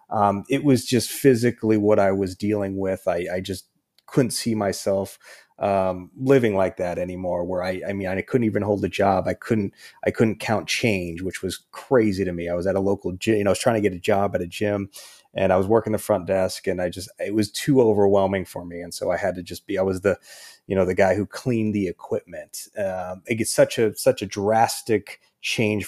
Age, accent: 30-49, American